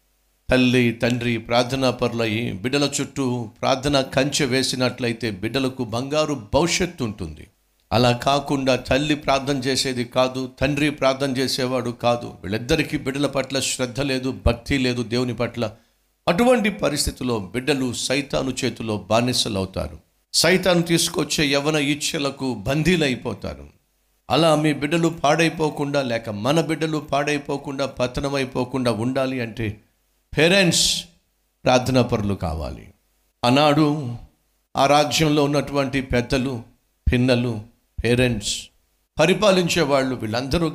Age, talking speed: 50-69, 95 wpm